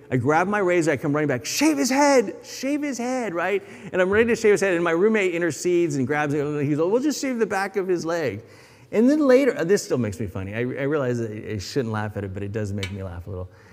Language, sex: English, male